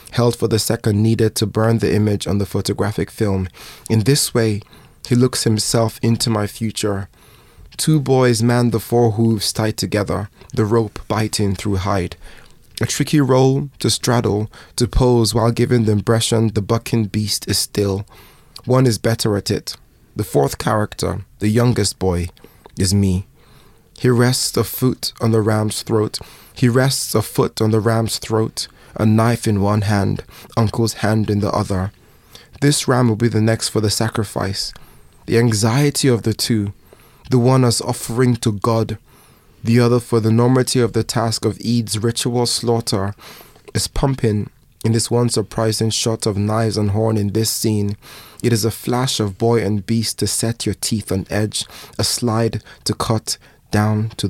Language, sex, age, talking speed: English, male, 20-39, 170 wpm